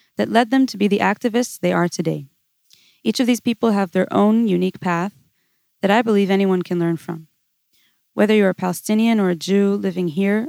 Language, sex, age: English, female, 20-39